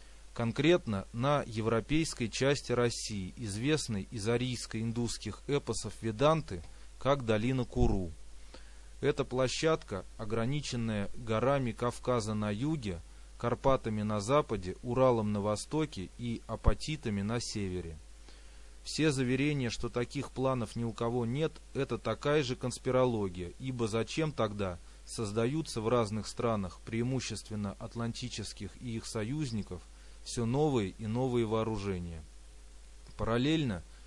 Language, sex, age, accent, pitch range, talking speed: Russian, male, 30-49, native, 100-130 Hz, 105 wpm